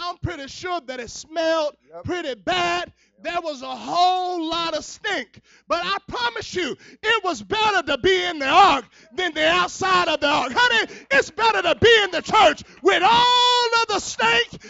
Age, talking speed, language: 30-49, 190 wpm, English